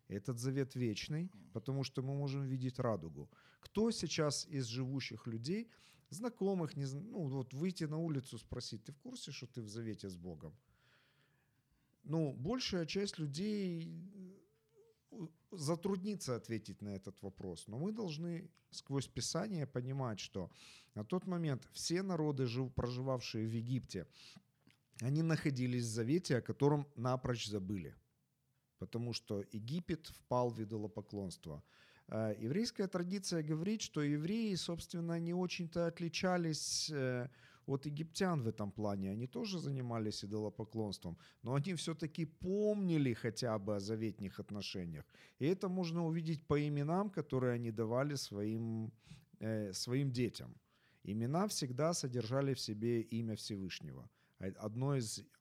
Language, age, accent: Ukrainian, 40-59, native